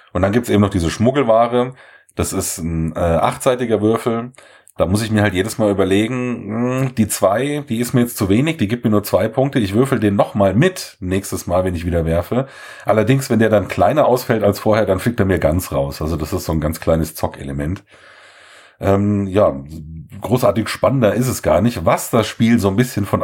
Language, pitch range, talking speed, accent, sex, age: German, 95-125 Hz, 220 wpm, German, male, 40-59